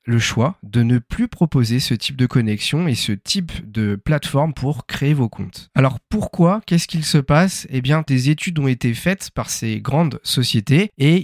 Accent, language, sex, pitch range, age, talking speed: French, French, male, 115-150 Hz, 40-59, 200 wpm